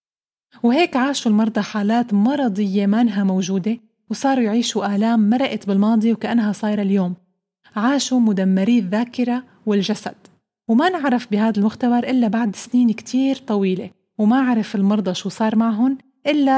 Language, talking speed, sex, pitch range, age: Arabic, 125 wpm, female, 200-245 Hz, 30-49